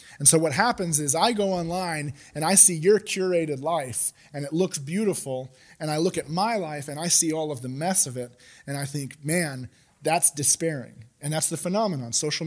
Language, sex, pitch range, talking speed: English, male, 130-165 Hz, 210 wpm